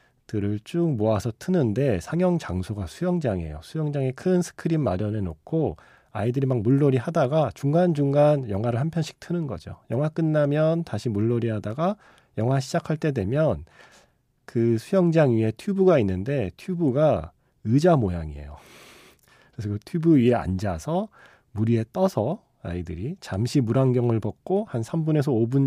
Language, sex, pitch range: Korean, male, 105-155 Hz